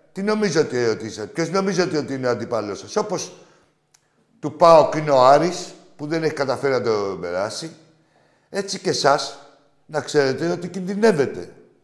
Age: 60-79